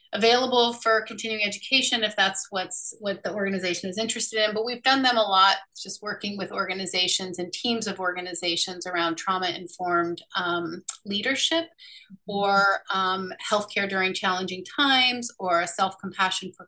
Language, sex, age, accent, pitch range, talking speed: English, female, 30-49, American, 185-225 Hz, 150 wpm